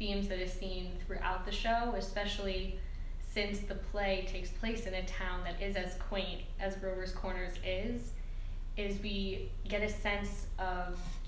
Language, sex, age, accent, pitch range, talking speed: English, female, 10-29, American, 180-195 Hz, 160 wpm